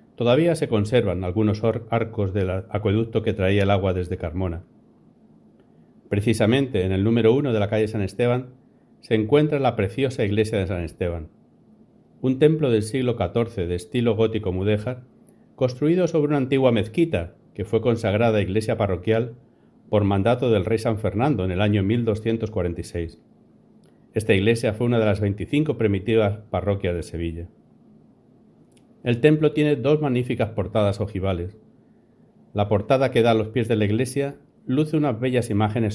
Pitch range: 100-125 Hz